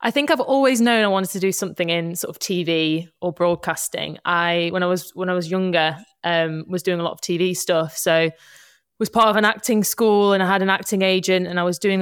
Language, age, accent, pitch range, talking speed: English, 20-39, British, 175-195 Hz, 245 wpm